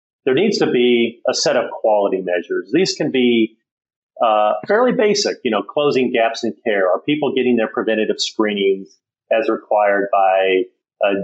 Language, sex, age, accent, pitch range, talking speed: English, male, 40-59, American, 100-120 Hz, 165 wpm